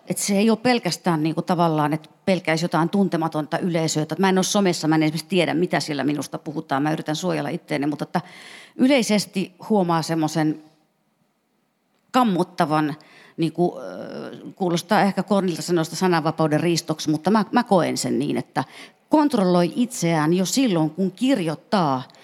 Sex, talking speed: female, 145 wpm